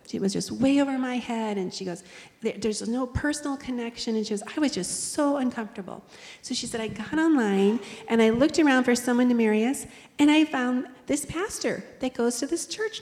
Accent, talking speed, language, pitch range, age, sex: American, 215 wpm, English, 205-270 Hz, 40-59, female